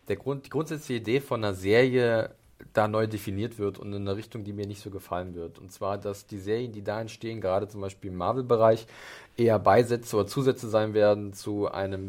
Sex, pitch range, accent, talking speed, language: male, 100-120 Hz, German, 215 wpm, German